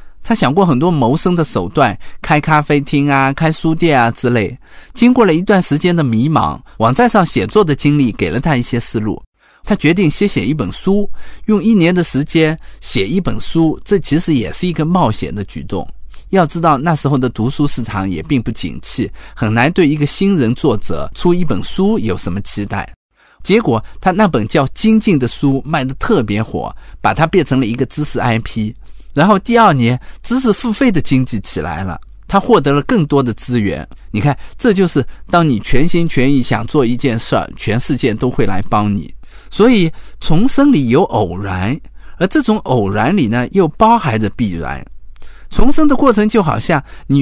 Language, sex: Chinese, male